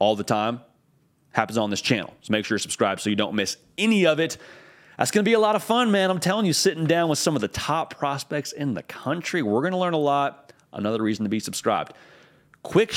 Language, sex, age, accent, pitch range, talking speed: English, male, 30-49, American, 105-155 Hz, 250 wpm